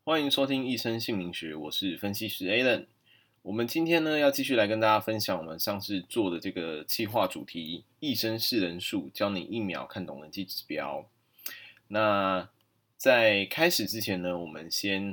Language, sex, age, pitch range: Chinese, male, 20-39, 90-115 Hz